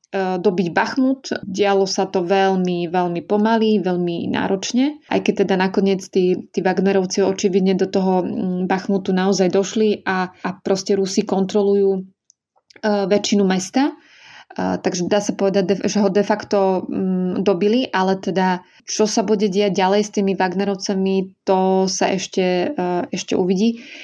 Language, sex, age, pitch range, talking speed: Slovak, female, 20-39, 190-215 Hz, 135 wpm